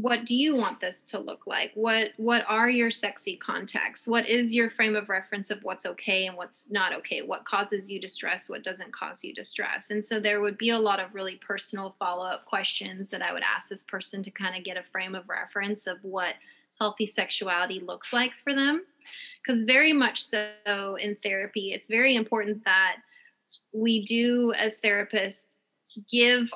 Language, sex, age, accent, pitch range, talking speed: English, female, 20-39, American, 200-235 Hz, 195 wpm